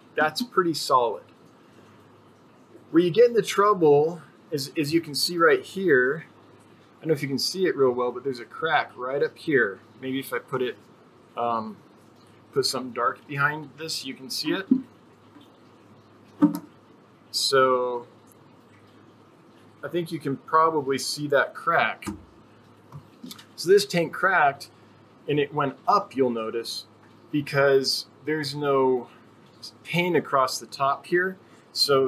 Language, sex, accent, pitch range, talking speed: English, male, American, 125-165 Hz, 145 wpm